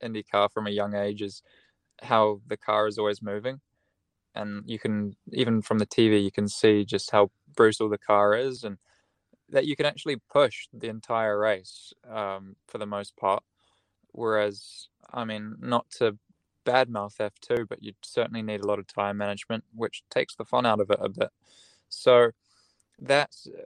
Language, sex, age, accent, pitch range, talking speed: English, male, 10-29, Australian, 105-115 Hz, 180 wpm